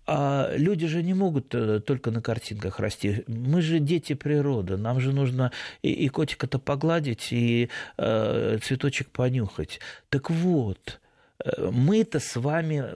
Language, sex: Russian, male